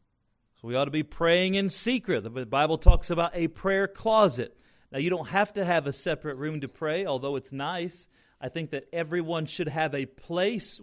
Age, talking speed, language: 40-59, 200 wpm, English